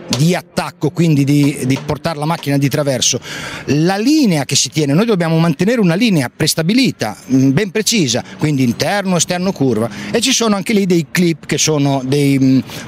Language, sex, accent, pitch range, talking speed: Italian, male, native, 135-175 Hz, 180 wpm